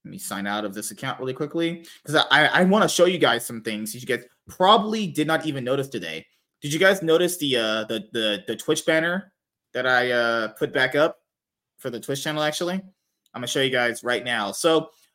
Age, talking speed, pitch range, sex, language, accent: 20-39, 235 wpm, 120-160 Hz, male, English, American